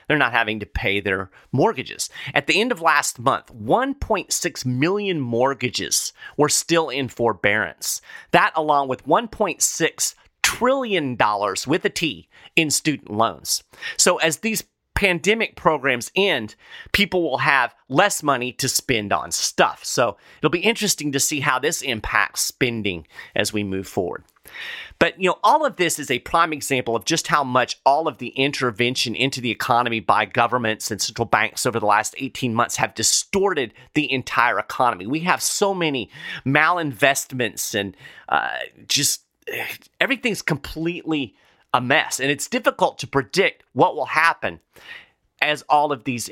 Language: English